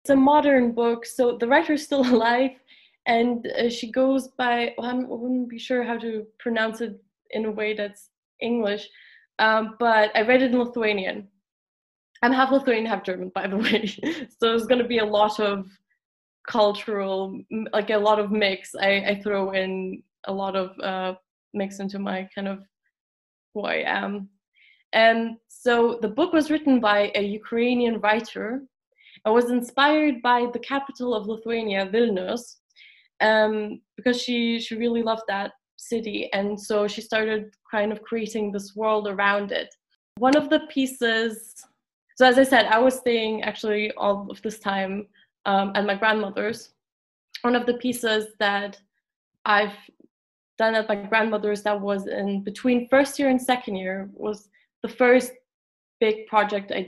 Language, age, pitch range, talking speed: English, 20-39, 205-245 Hz, 165 wpm